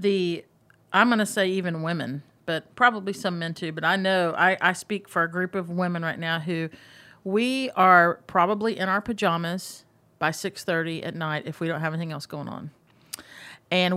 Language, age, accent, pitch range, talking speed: English, 40-59, American, 165-195 Hz, 195 wpm